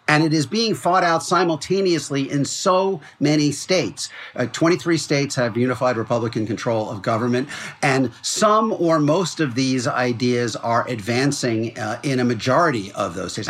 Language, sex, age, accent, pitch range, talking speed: English, male, 50-69, American, 120-160 Hz, 160 wpm